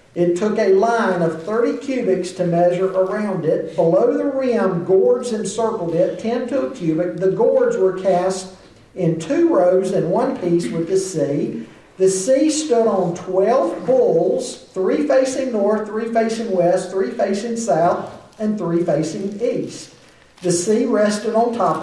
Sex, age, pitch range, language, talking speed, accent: male, 50-69, 170-230 Hz, English, 160 wpm, American